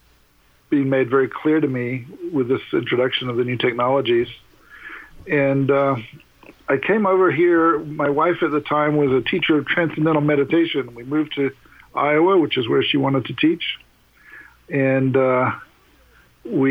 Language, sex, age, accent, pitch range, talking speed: English, male, 60-79, American, 125-145 Hz, 160 wpm